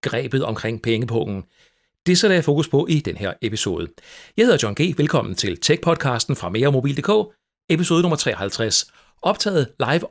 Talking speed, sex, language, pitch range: 180 wpm, male, Danish, 115-165 Hz